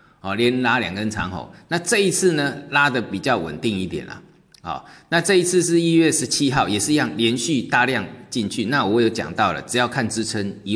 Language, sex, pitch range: Chinese, male, 110-150 Hz